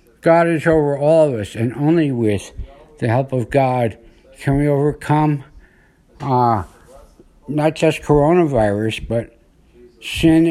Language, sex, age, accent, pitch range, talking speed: English, male, 60-79, American, 110-145 Hz, 125 wpm